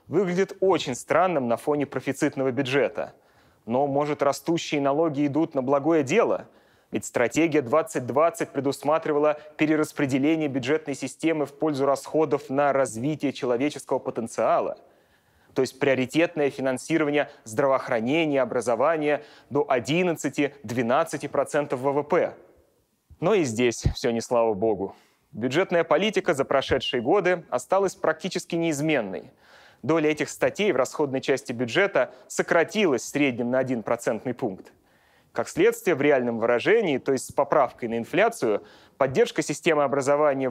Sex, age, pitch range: male, 30-49, 135-165 Hz